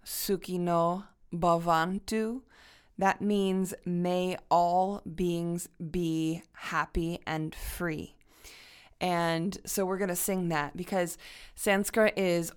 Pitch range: 170-205 Hz